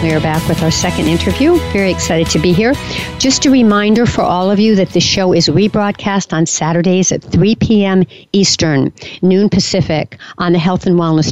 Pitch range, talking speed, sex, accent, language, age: 165-210 Hz, 195 wpm, female, American, English, 60-79